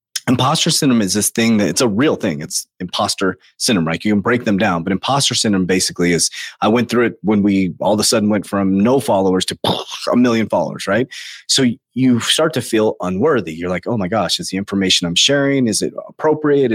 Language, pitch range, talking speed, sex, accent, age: English, 100-150 Hz, 220 wpm, male, American, 30-49